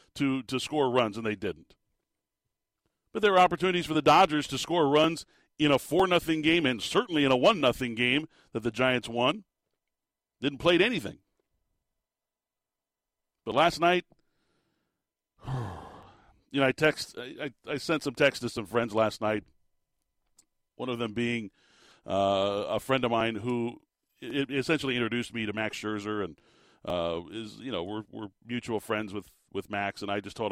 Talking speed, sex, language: 175 wpm, male, English